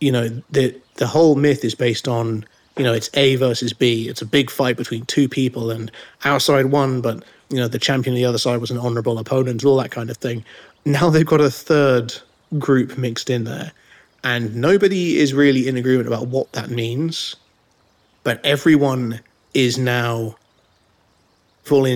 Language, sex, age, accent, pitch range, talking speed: English, male, 30-49, British, 115-135 Hz, 185 wpm